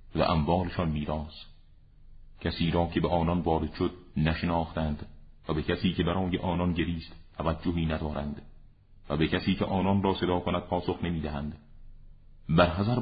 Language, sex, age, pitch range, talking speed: Persian, male, 40-59, 75-90 Hz, 150 wpm